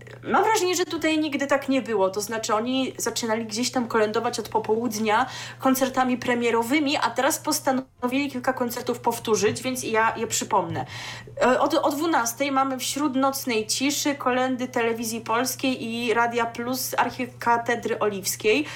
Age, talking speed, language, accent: 20-39, 140 wpm, Polish, native